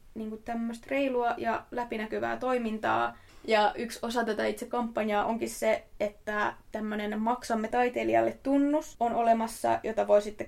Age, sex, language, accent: 20-39, female, Finnish, native